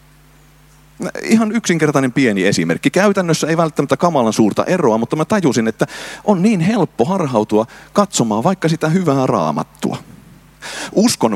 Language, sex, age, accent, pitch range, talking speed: Finnish, male, 30-49, native, 100-150 Hz, 125 wpm